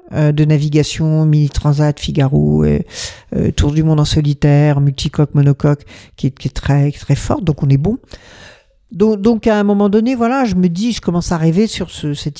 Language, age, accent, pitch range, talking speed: French, 50-69, French, 140-205 Hz, 205 wpm